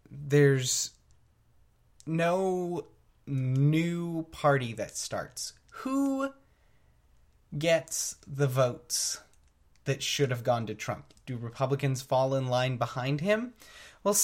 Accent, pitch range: American, 125-155 Hz